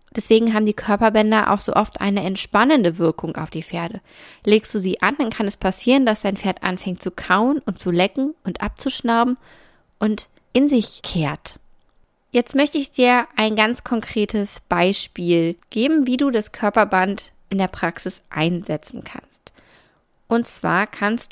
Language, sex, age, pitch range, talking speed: German, female, 20-39, 175-235 Hz, 160 wpm